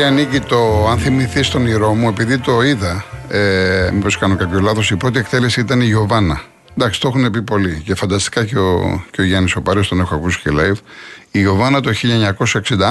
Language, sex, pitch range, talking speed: Greek, male, 95-115 Hz, 190 wpm